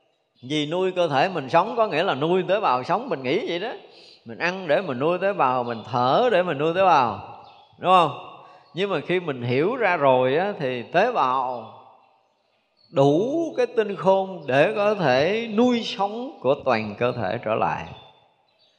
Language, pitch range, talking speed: Vietnamese, 115-160 Hz, 190 wpm